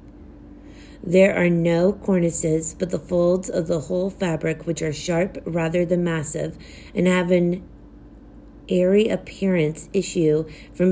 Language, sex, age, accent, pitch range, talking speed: English, female, 40-59, American, 165-190 Hz, 130 wpm